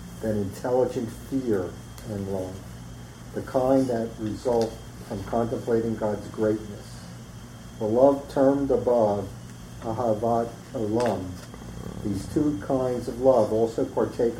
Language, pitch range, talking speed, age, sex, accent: English, 95-125 Hz, 110 wpm, 50-69, male, American